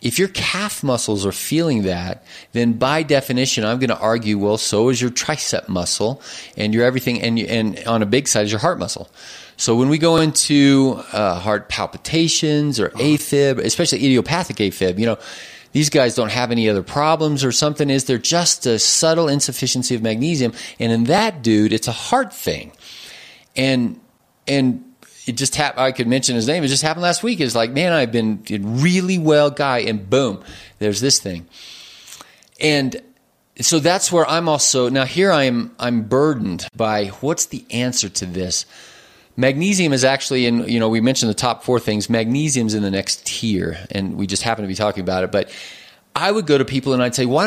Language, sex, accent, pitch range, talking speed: English, male, American, 110-150 Hz, 195 wpm